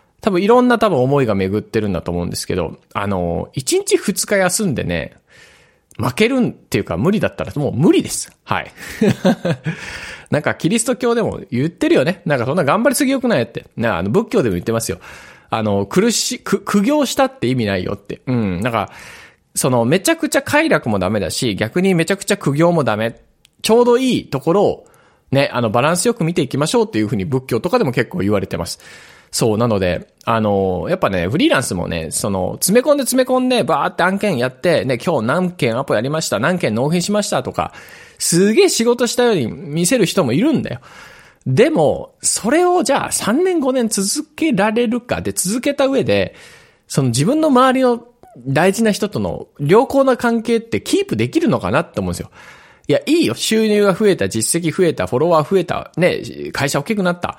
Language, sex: Japanese, male